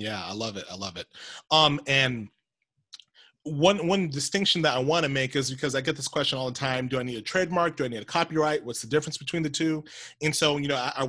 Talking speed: 260 wpm